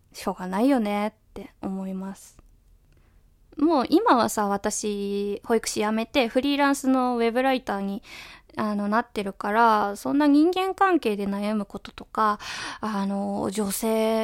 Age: 20-39